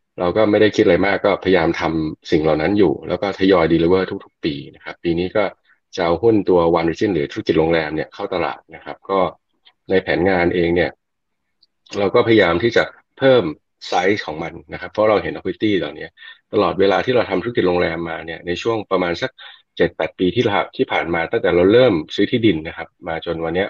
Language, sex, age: Thai, male, 20-39